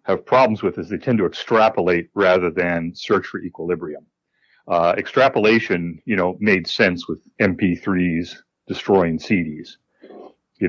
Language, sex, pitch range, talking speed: English, male, 85-100 Hz, 135 wpm